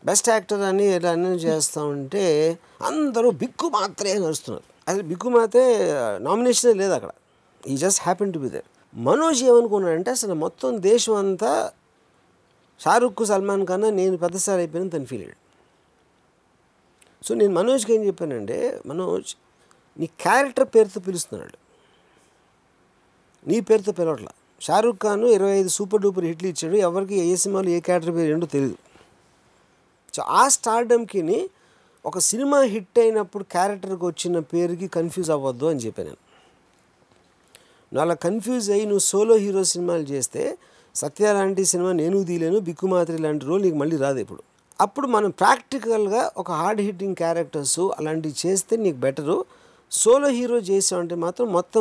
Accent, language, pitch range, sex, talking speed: native, Telugu, 170-225 Hz, male, 120 wpm